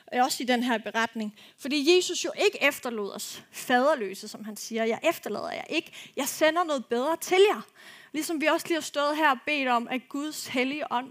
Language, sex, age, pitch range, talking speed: Danish, female, 30-49, 225-295 Hz, 215 wpm